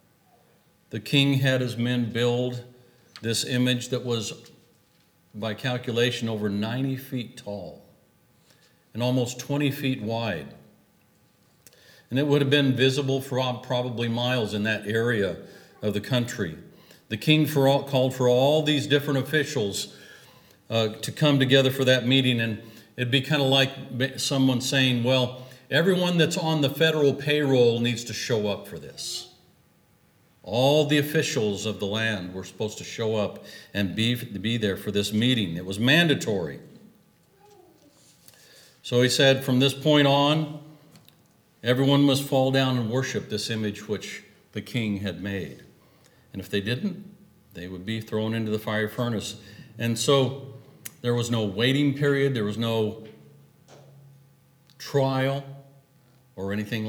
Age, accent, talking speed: 50-69, American, 145 wpm